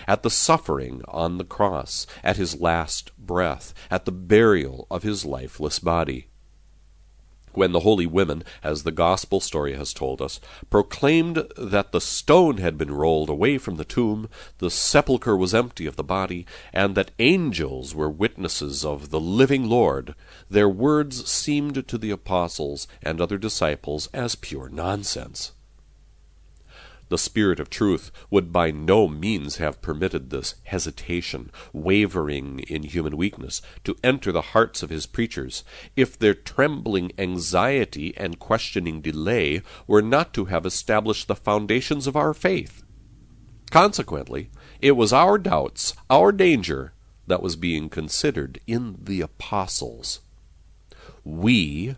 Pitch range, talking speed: 80-110 Hz, 140 wpm